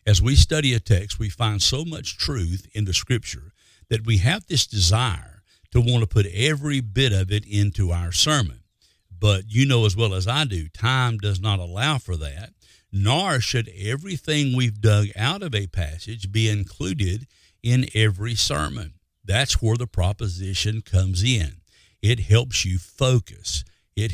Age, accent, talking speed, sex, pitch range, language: 50-69, American, 170 wpm, male, 95-115 Hz, English